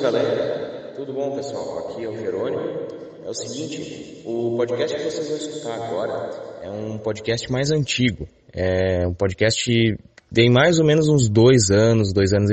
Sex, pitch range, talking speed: male, 100-130 Hz, 170 wpm